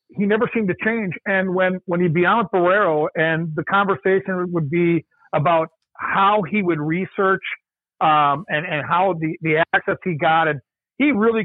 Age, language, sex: 50-69, English, male